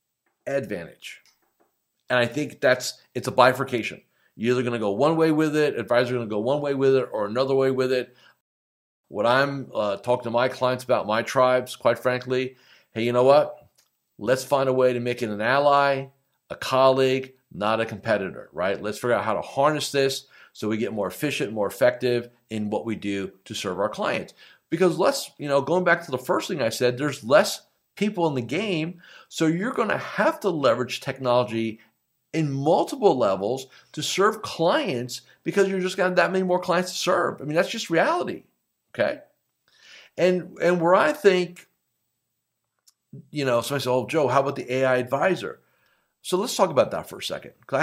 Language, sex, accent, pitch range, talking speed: English, male, American, 120-155 Hz, 195 wpm